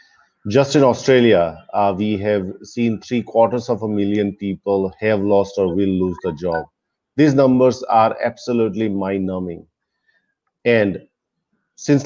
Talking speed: 135 wpm